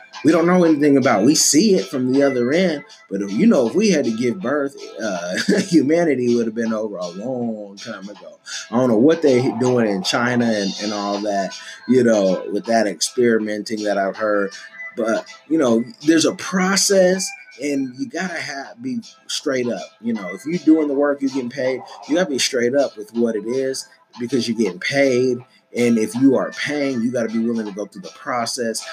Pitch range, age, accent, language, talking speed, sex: 115-160 Hz, 30-49, American, English, 220 wpm, male